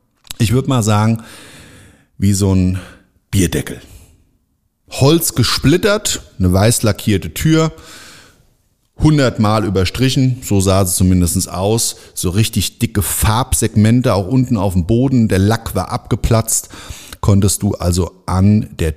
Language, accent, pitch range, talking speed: German, German, 90-115 Hz, 125 wpm